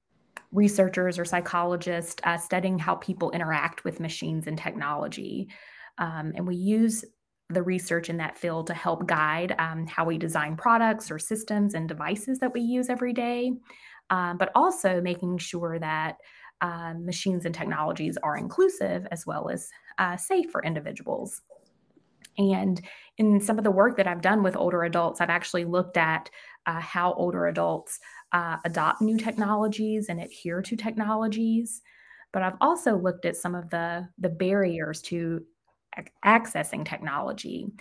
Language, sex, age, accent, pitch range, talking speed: English, female, 20-39, American, 160-190 Hz, 155 wpm